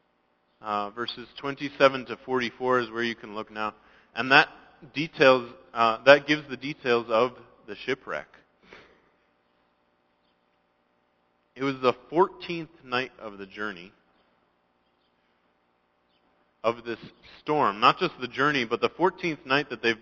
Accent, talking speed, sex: American, 125 wpm, male